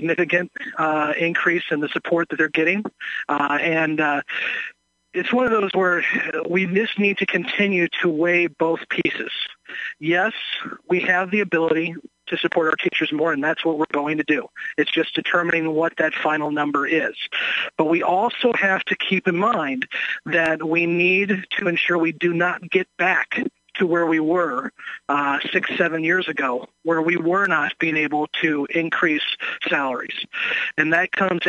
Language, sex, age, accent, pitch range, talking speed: English, male, 50-69, American, 160-180 Hz, 170 wpm